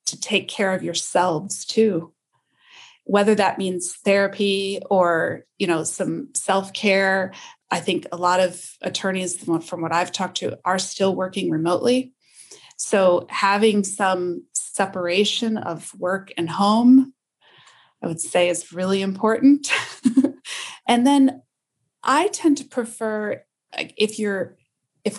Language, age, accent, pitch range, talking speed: English, 30-49, American, 180-225 Hz, 130 wpm